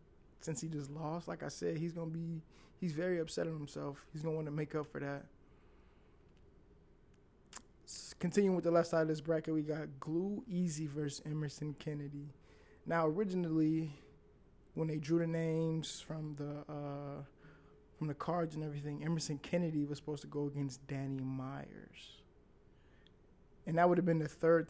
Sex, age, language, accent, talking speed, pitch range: male, 20-39, English, American, 170 wpm, 140-160 Hz